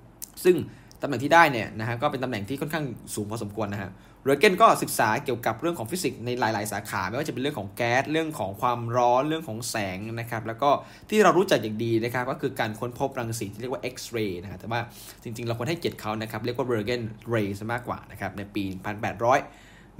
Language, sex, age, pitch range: Thai, male, 10-29, 110-140 Hz